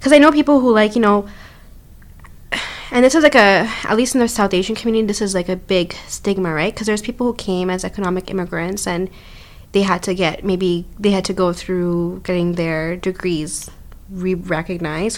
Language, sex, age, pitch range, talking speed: English, female, 20-39, 165-195 Hz, 200 wpm